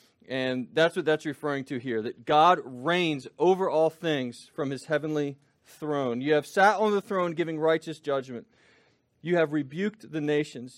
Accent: American